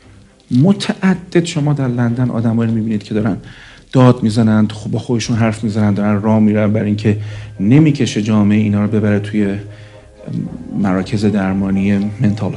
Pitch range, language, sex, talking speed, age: 105-130 Hz, Persian, male, 140 wpm, 50-69